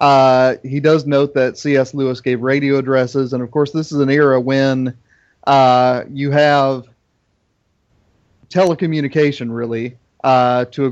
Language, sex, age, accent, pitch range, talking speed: English, male, 30-49, American, 125-140 Hz, 145 wpm